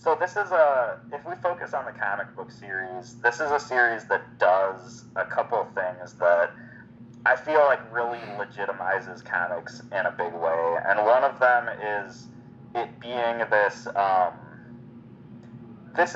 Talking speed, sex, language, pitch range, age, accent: 160 wpm, male, English, 105-125 Hz, 30-49, American